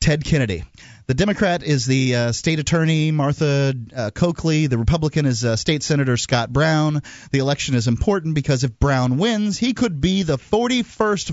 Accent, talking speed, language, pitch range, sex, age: American, 175 wpm, English, 110-150 Hz, male, 30-49